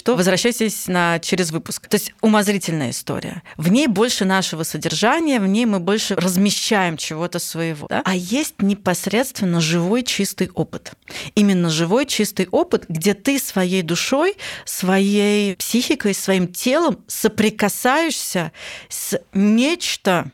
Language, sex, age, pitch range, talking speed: Russian, female, 30-49, 195-255 Hz, 120 wpm